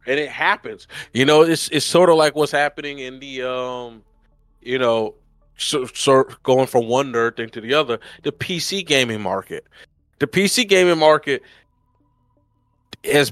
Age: 20-39